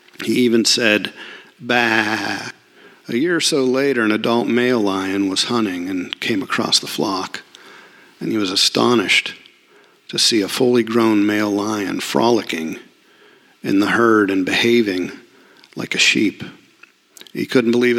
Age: 50-69